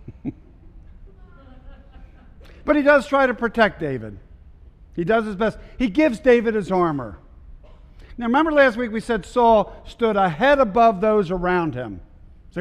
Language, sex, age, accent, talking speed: English, male, 50-69, American, 150 wpm